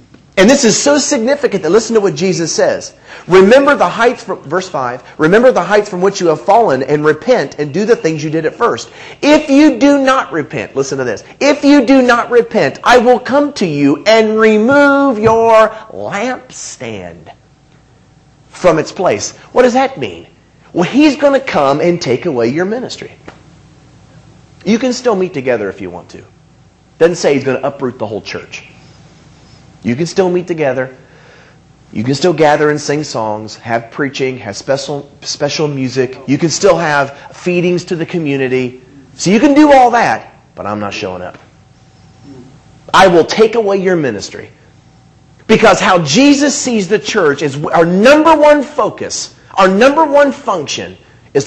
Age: 40-59